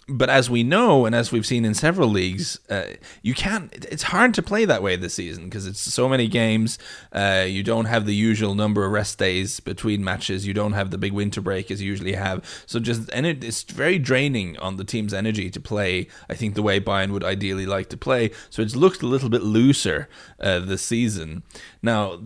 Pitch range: 100-130 Hz